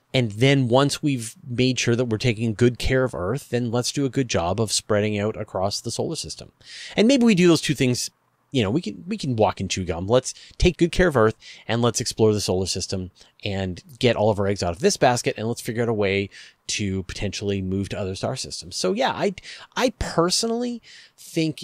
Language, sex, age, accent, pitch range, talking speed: English, male, 30-49, American, 100-140 Hz, 230 wpm